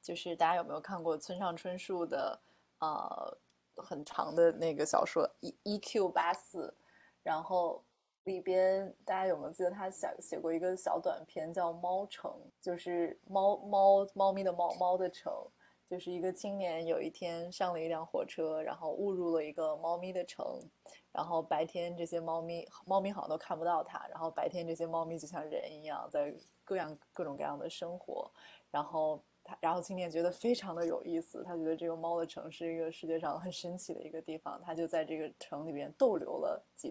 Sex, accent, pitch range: female, native, 160-185 Hz